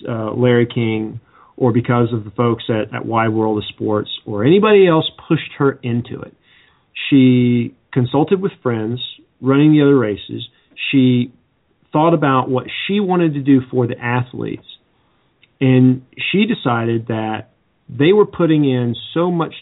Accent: American